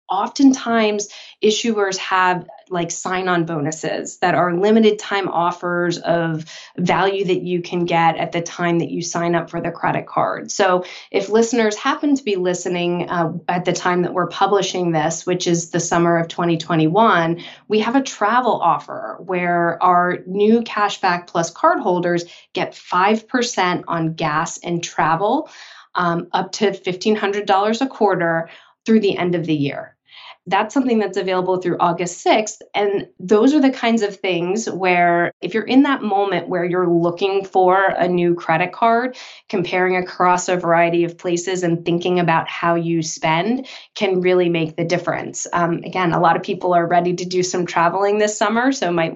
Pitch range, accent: 170-205 Hz, American